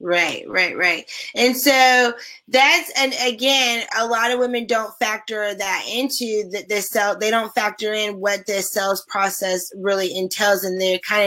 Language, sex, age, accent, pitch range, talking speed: English, female, 20-39, American, 210-260 Hz, 165 wpm